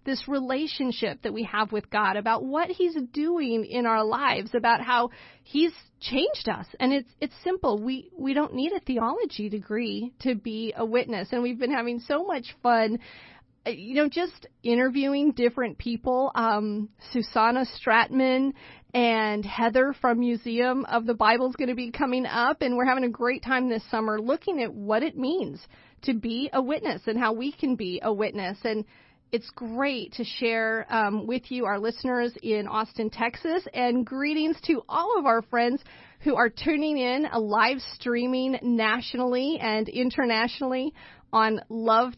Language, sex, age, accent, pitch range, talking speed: English, female, 40-59, American, 225-265 Hz, 170 wpm